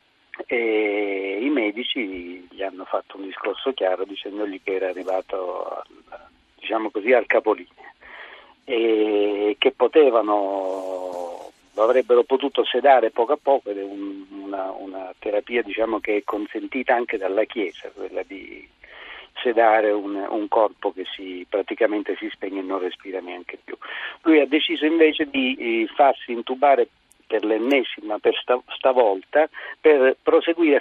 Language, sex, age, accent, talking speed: Italian, male, 50-69, native, 135 wpm